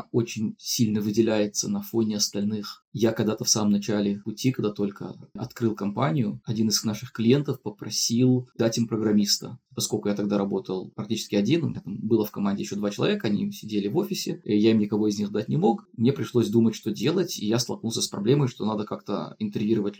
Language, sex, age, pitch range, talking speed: Russian, male, 20-39, 110-165 Hz, 200 wpm